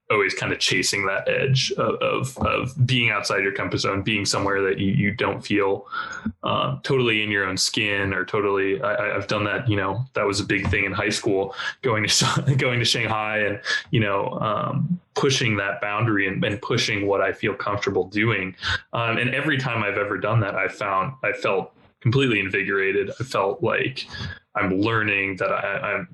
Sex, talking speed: male, 190 wpm